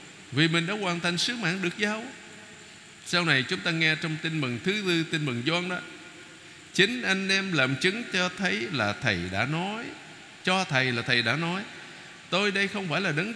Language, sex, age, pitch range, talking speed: Vietnamese, male, 60-79, 140-180 Hz, 205 wpm